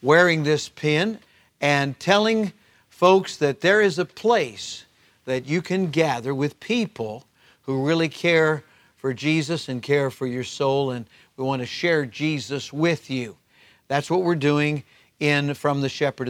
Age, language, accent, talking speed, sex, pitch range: 50-69, English, American, 160 wpm, male, 130-165 Hz